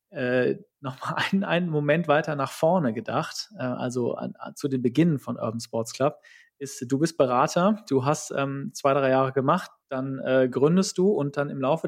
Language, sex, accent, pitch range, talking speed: German, male, German, 135-170 Hz, 200 wpm